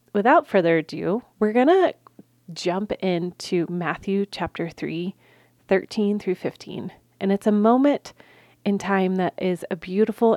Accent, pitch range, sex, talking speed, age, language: American, 175-205 Hz, female, 140 wpm, 30-49, English